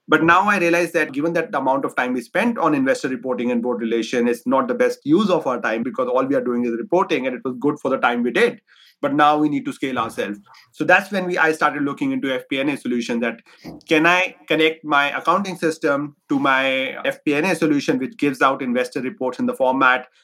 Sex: male